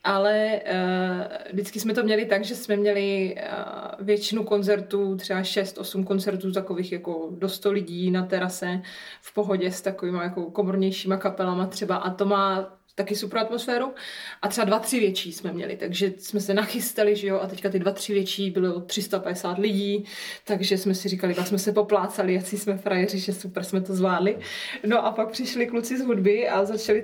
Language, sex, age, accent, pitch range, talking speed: Czech, female, 20-39, native, 190-210 Hz, 185 wpm